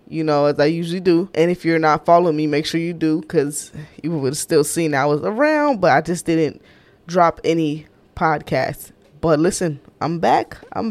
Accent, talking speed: American, 200 wpm